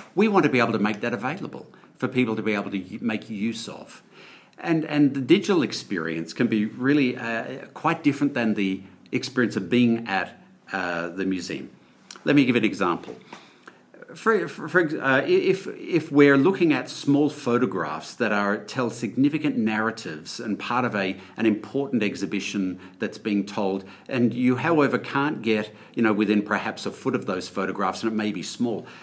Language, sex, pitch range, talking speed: English, male, 105-140 Hz, 180 wpm